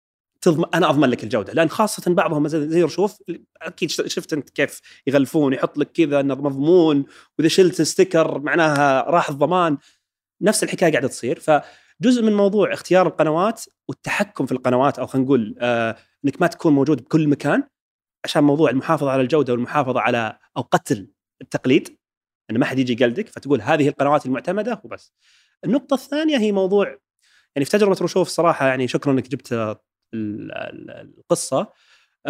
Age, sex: 30-49, male